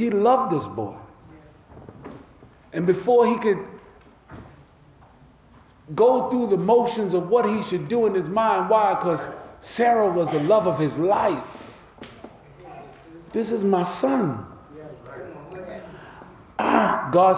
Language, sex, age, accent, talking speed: English, male, 40-59, American, 115 wpm